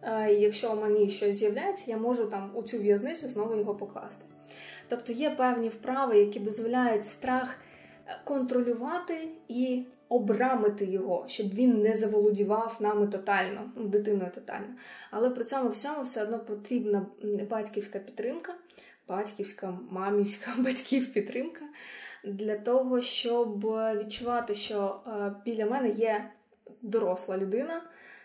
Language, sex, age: Ukrainian, female, 20-39